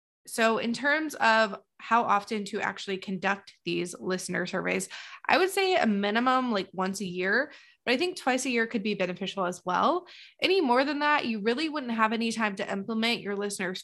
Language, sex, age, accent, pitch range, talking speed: English, female, 20-39, American, 185-260 Hz, 200 wpm